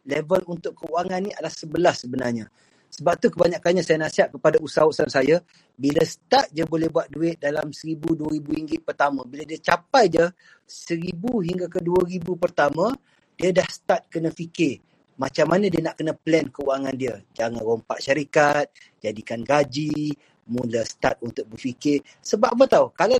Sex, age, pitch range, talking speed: male, 30-49, 155-195 Hz, 155 wpm